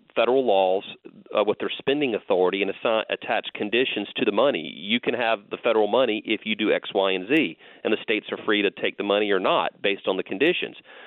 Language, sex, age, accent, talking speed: English, male, 40-59, American, 235 wpm